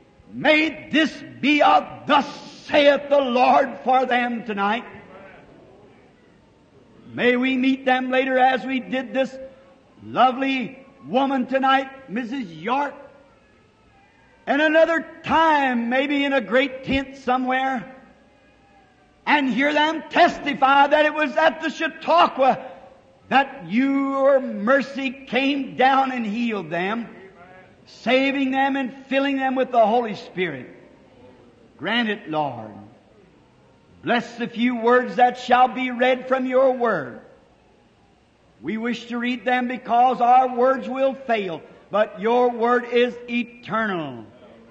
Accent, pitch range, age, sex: American, 225-270 Hz, 60-79, male